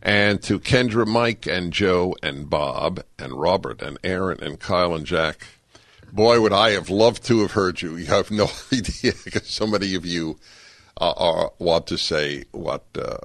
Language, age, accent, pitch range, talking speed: English, 60-79, American, 70-95 Hz, 180 wpm